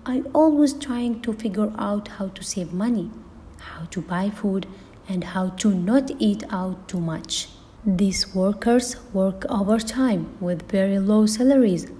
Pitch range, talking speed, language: 180-245 Hz, 150 wpm, English